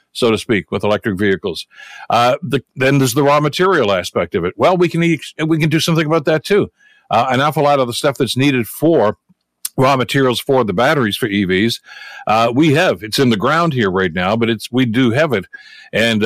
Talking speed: 220 wpm